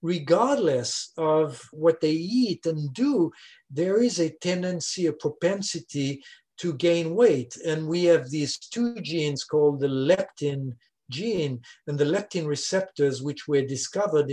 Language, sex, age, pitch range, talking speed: English, male, 50-69, 150-190 Hz, 140 wpm